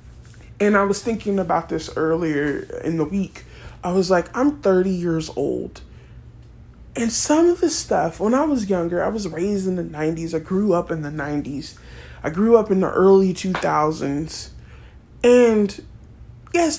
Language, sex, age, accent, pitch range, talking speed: English, male, 20-39, American, 165-215 Hz, 170 wpm